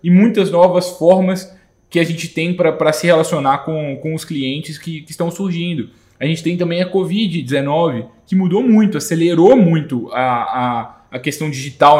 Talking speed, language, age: 175 wpm, English, 20-39